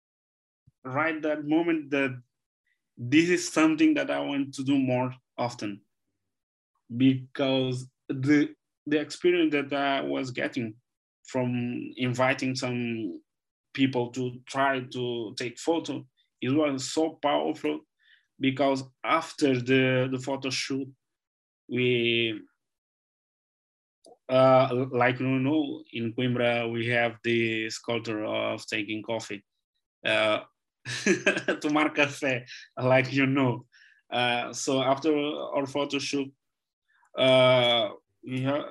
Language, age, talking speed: Italian, 20-39, 110 wpm